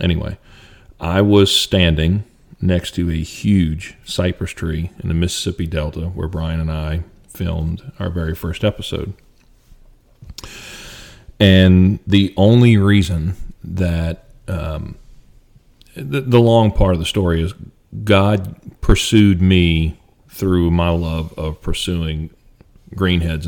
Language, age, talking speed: English, 40-59, 120 wpm